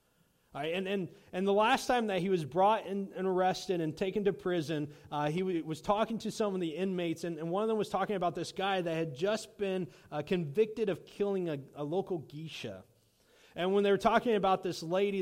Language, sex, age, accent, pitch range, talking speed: English, male, 30-49, American, 165-220 Hz, 225 wpm